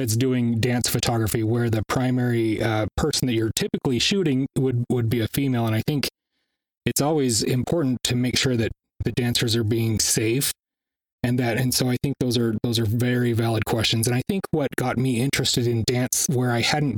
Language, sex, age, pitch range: English, male, 30-49, 120-140 Hz